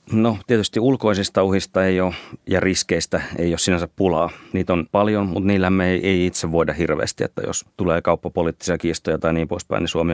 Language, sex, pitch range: Finnish, male, 85-95 Hz